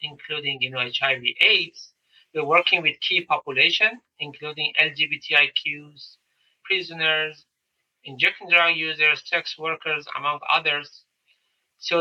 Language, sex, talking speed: English, male, 105 wpm